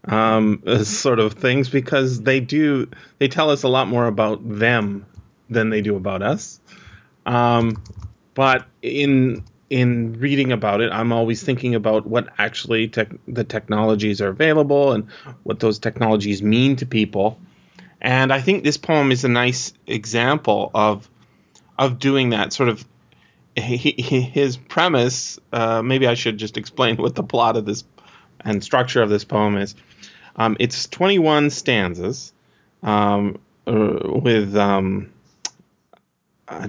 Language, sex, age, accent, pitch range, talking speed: English, male, 30-49, American, 105-130 Hz, 145 wpm